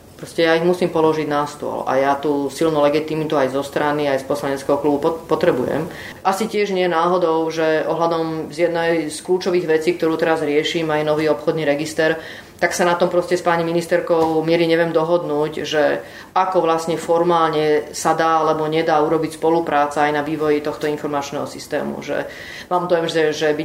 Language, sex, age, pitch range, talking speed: Slovak, female, 30-49, 155-175 Hz, 180 wpm